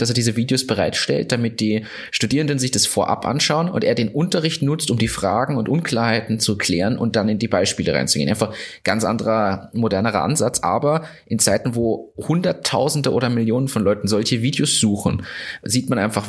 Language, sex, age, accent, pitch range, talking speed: German, male, 30-49, German, 105-130 Hz, 190 wpm